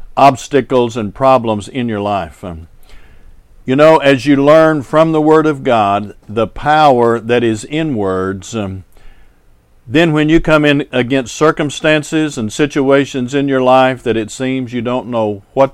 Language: English